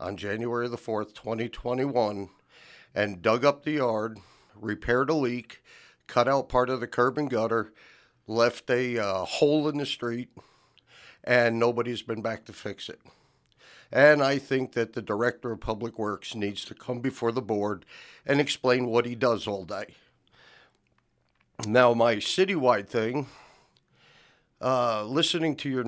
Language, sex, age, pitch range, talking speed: English, male, 50-69, 110-130 Hz, 150 wpm